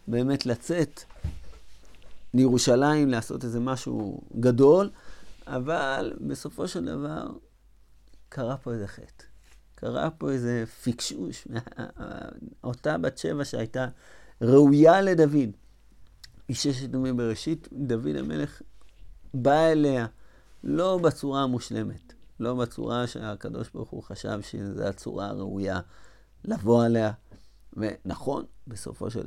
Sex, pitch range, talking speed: male, 100-135 Hz, 100 wpm